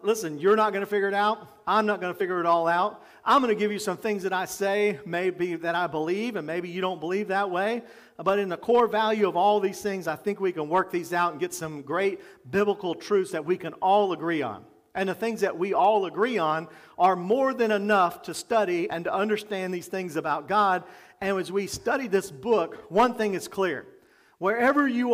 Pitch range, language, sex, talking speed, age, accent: 180-225 Hz, English, male, 235 wpm, 40-59, American